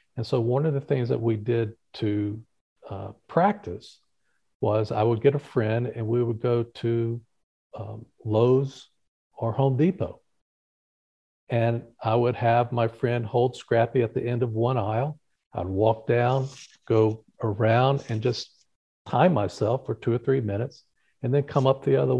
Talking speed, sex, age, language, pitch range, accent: 170 wpm, male, 50-69, English, 115-140 Hz, American